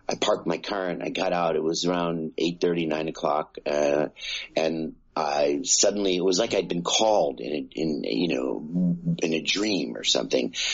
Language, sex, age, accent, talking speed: English, male, 50-69, American, 190 wpm